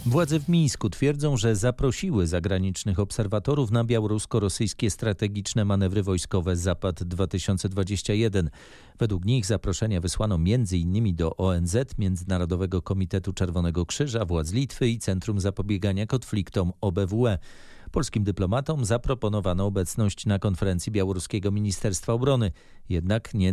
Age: 40-59